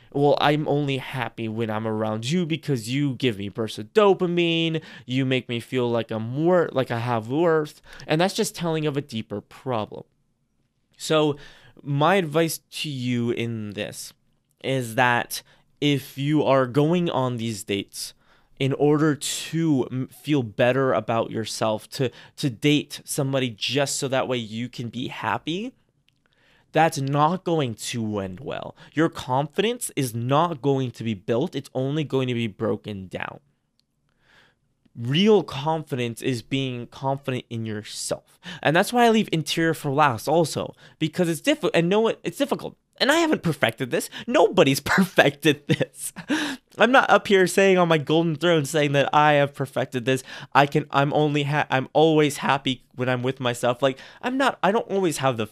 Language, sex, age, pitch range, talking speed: English, male, 20-39, 125-165 Hz, 170 wpm